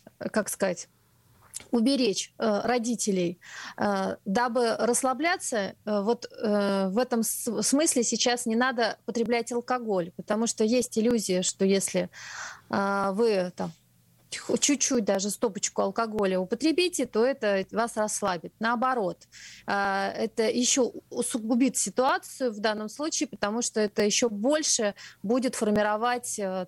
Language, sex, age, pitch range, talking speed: Russian, female, 30-49, 200-245 Hz, 105 wpm